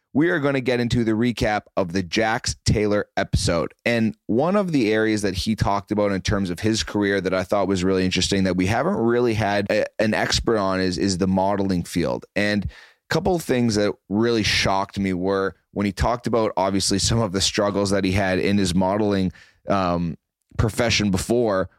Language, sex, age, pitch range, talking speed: English, male, 30-49, 95-110 Hz, 205 wpm